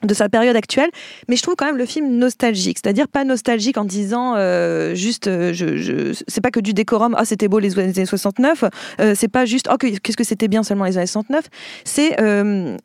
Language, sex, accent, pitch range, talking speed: French, female, French, 205-260 Hz, 230 wpm